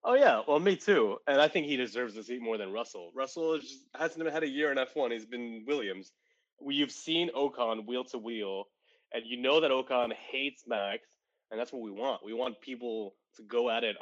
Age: 20-39